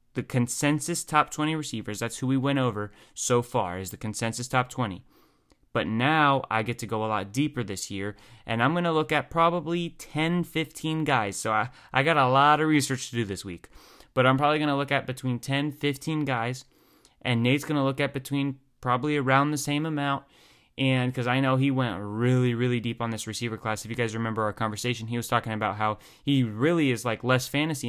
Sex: male